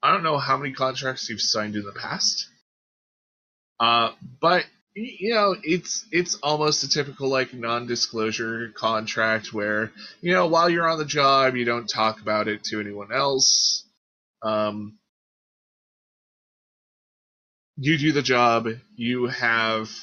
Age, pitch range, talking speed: 20-39, 110-150 Hz, 140 wpm